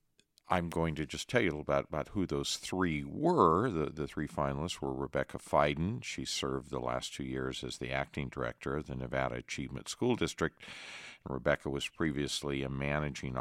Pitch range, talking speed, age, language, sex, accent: 65-80 Hz, 190 wpm, 50-69, English, male, American